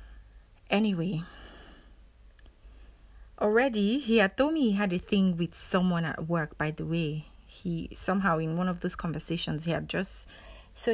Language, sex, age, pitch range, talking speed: English, female, 30-49, 165-205 Hz, 155 wpm